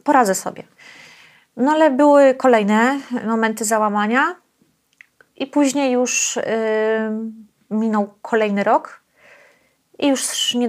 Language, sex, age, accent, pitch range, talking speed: Polish, female, 30-49, native, 205-240 Hz, 95 wpm